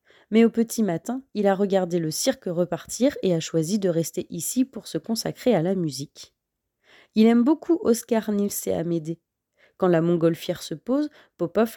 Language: French